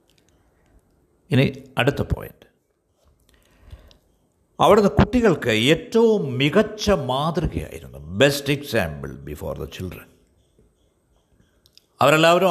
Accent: native